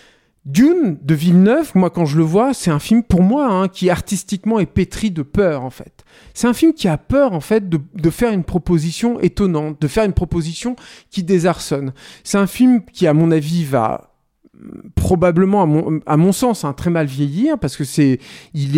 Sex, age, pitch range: male, 40-59, 150-195 Hz